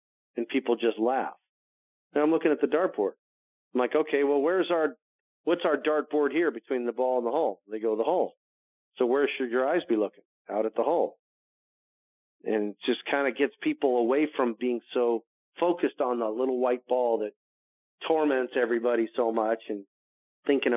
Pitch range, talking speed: 110-140 Hz, 190 wpm